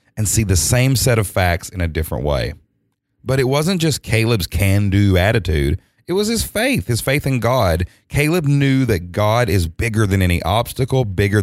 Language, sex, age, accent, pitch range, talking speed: English, male, 30-49, American, 95-130 Hz, 190 wpm